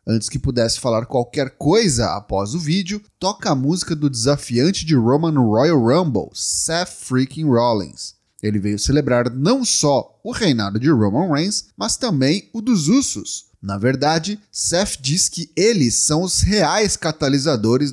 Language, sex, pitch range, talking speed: Portuguese, male, 120-175 Hz, 155 wpm